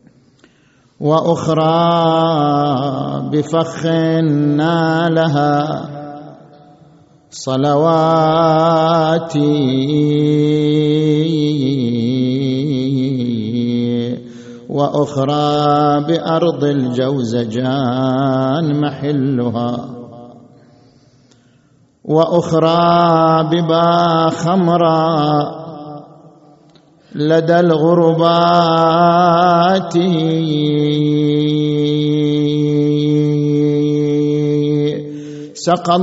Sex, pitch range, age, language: male, 145-165 Hz, 50-69, Arabic